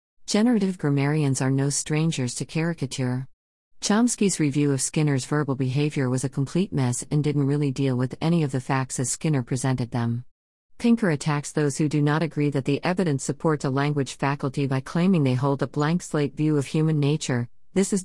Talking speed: 190 wpm